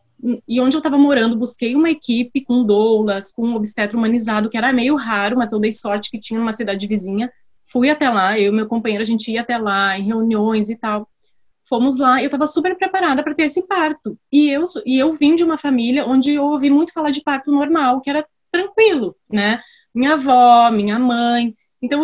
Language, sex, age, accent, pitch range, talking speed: Portuguese, female, 20-39, Brazilian, 220-290 Hz, 210 wpm